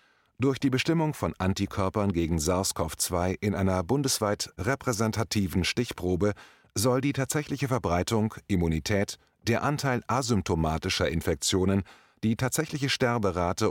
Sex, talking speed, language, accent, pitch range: male, 105 wpm, German, German, 90-120 Hz